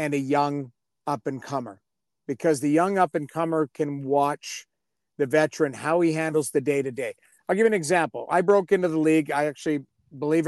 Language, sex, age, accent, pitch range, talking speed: English, male, 50-69, American, 145-175 Hz, 170 wpm